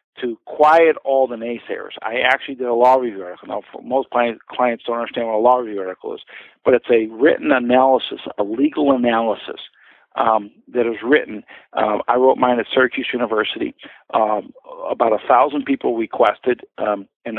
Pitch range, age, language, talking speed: 115-145 Hz, 50-69, English, 175 wpm